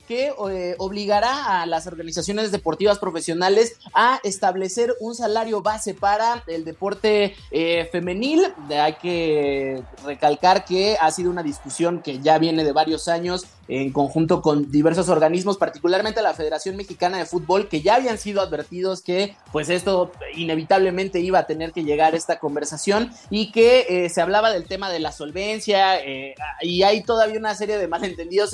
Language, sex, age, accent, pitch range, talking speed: Spanish, male, 30-49, Mexican, 150-195 Hz, 165 wpm